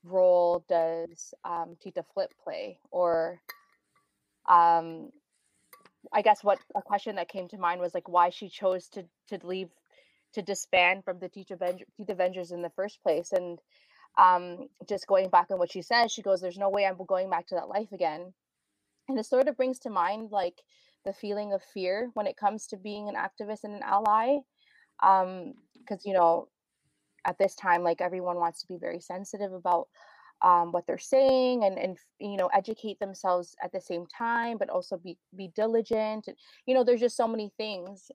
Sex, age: female, 20-39